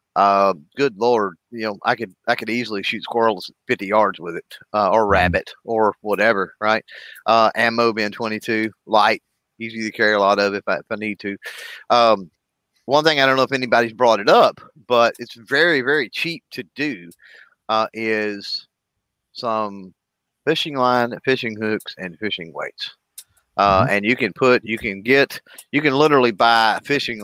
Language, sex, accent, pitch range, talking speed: English, male, American, 100-125 Hz, 180 wpm